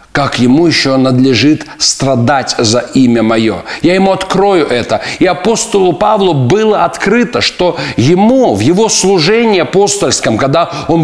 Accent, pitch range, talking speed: native, 140-185 Hz, 135 wpm